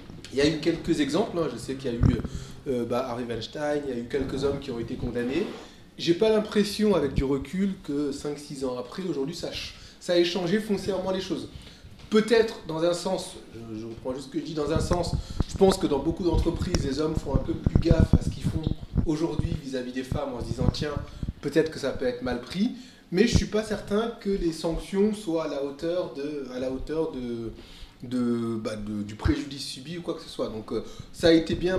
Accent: French